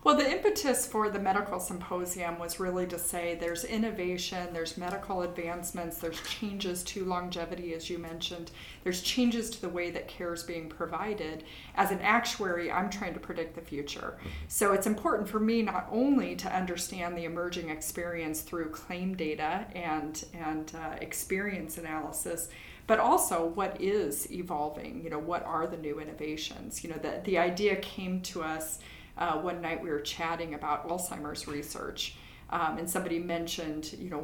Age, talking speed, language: 30-49, 170 wpm, English